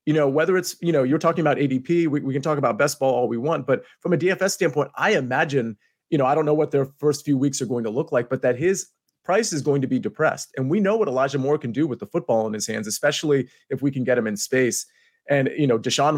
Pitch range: 125-155 Hz